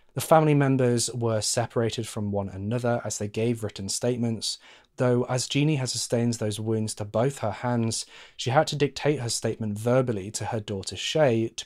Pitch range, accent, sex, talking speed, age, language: 110-135 Hz, British, male, 185 wpm, 30-49, English